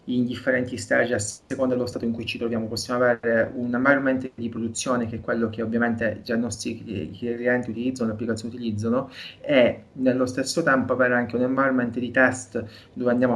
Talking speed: 190 wpm